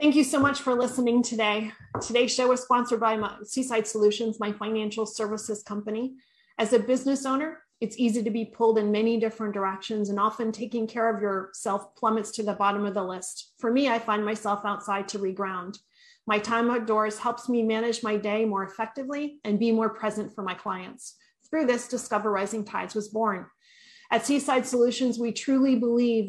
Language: English